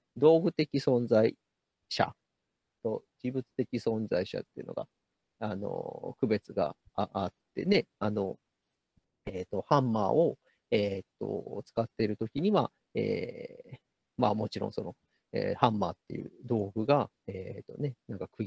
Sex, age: male, 40-59